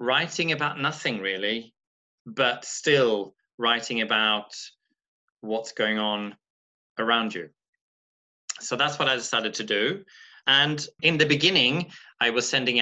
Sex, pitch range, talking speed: male, 110-135 Hz, 125 wpm